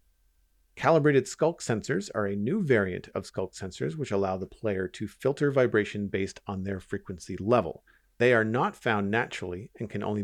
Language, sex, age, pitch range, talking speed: English, male, 40-59, 100-135 Hz, 175 wpm